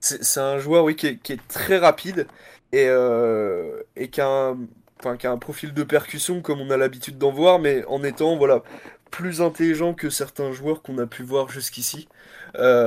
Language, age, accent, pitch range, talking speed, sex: French, 20-39, French, 125-145 Hz, 175 wpm, male